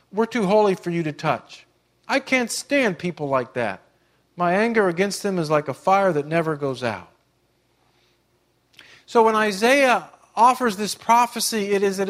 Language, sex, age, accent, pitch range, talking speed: English, male, 50-69, American, 165-220 Hz, 170 wpm